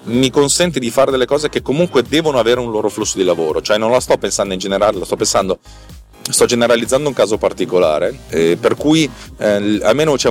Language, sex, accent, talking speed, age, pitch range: Italian, male, native, 210 wpm, 30-49, 100-140 Hz